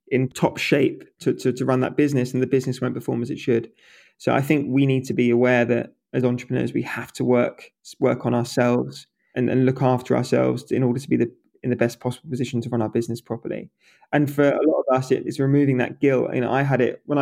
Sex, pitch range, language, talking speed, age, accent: male, 120-140 Hz, English, 255 wpm, 20-39, British